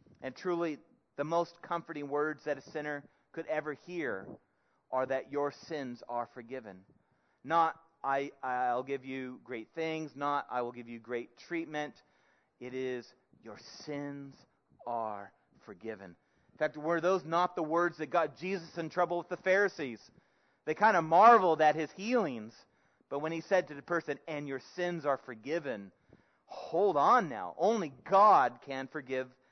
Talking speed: 160 wpm